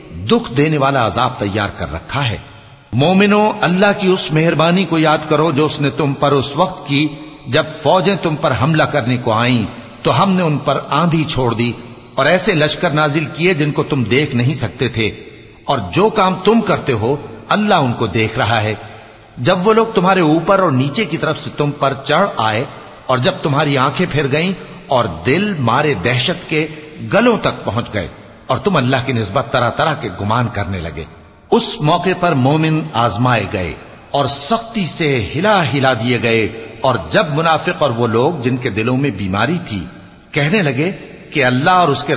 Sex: male